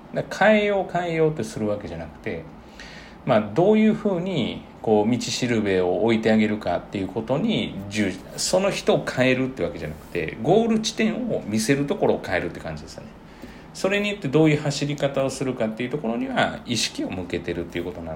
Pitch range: 90-145 Hz